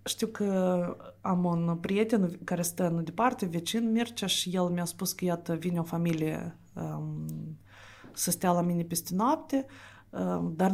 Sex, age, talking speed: female, 30-49, 160 wpm